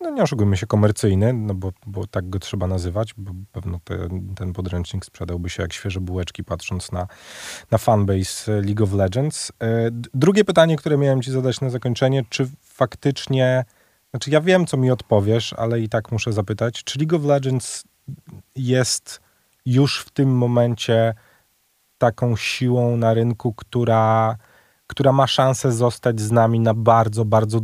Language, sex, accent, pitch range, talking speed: Polish, male, native, 100-120 Hz, 155 wpm